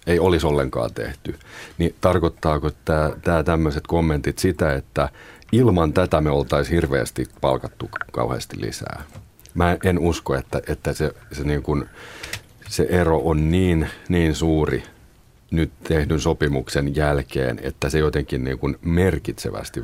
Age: 40-59